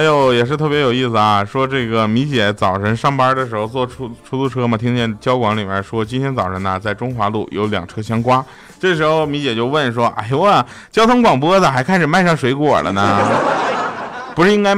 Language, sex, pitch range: Chinese, male, 105-150 Hz